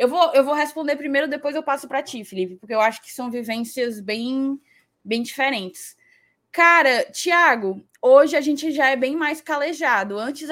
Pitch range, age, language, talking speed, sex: 220-290 Hz, 20-39, Portuguese, 185 wpm, female